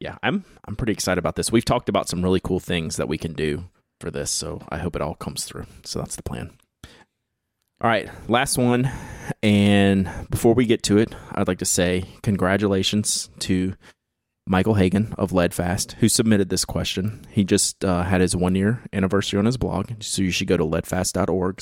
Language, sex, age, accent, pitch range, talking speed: English, male, 30-49, American, 90-110 Hz, 200 wpm